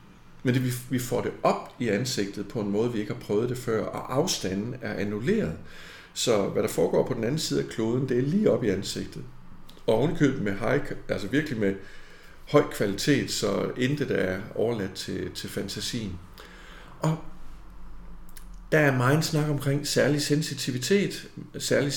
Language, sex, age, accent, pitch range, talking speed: Danish, male, 50-69, native, 110-160 Hz, 170 wpm